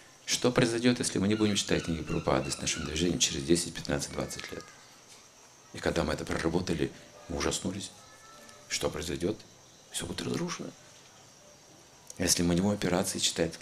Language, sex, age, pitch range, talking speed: Russian, male, 50-69, 80-100 Hz, 155 wpm